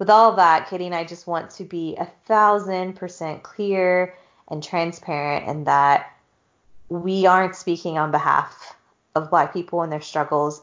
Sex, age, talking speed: female, 20-39, 165 wpm